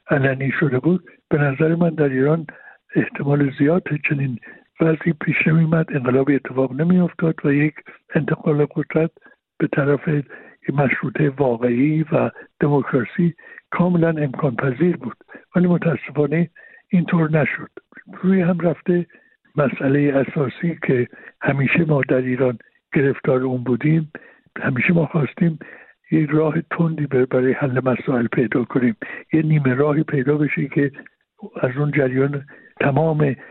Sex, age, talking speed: male, 60-79, 125 wpm